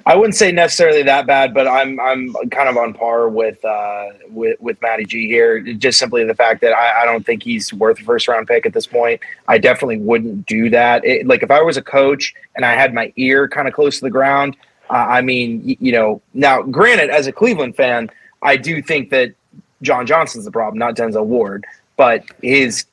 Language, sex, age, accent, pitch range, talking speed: English, male, 30-49, American, 125-155 Hz, 220 wpm